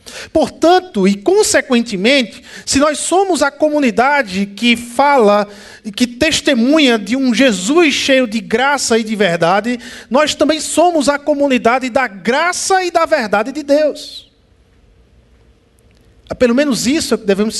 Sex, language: male, Portuguese